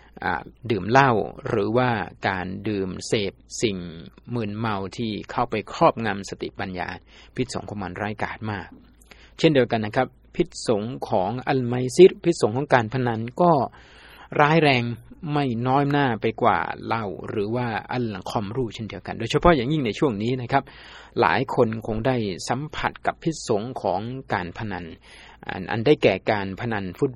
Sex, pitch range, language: male, 100-130 Hz, Thai